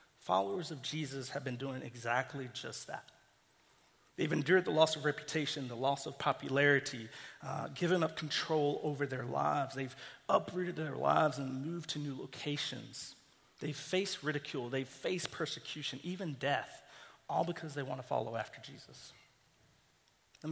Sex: male